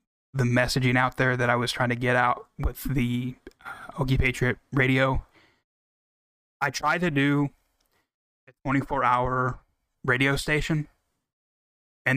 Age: 20-39